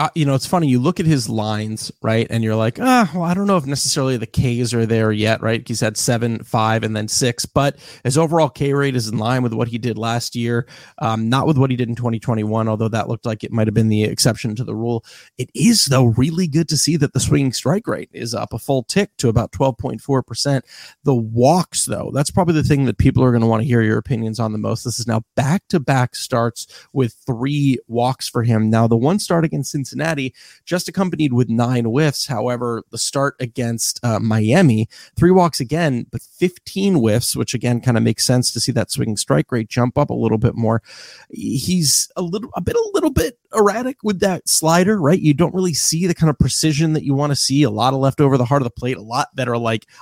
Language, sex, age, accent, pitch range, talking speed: English, male, 30-49, American, 115-155 Hz, 240 wpm